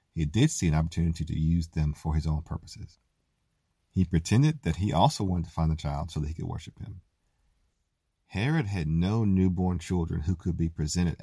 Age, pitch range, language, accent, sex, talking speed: 40-59, 80-95 Hz, English, American, male, 200 wpm